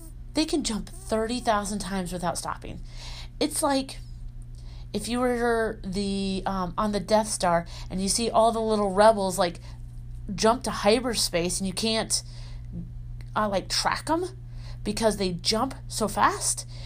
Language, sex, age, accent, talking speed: English, female, 30-49, American, 150 wpm